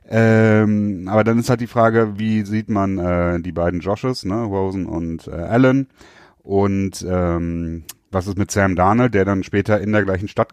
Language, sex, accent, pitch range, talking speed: German, male, German, 95-120 Hz, 190 wpm